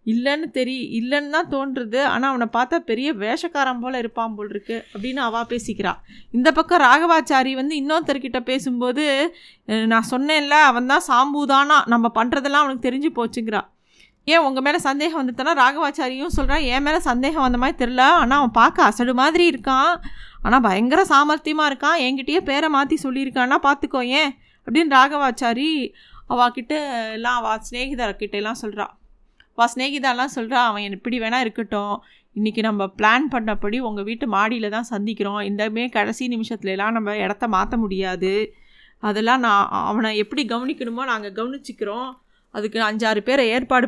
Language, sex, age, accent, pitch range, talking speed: Tamil, female, 20-39, native, 225-280 Hz, 140 wpm